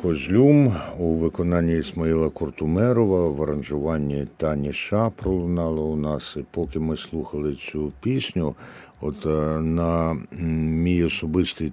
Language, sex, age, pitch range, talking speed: Ukrainian, male, 60-79, 80-105 Hz, 115 wpm